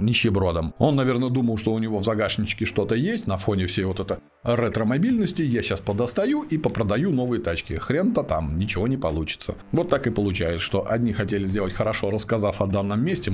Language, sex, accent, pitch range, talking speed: Russian, male, native, 100-130 Hz, 190 wpm